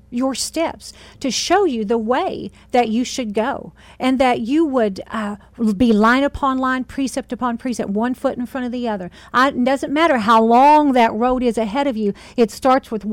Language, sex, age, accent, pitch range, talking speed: English, female, 50-69, American, 205-270 Hz, 200 wpm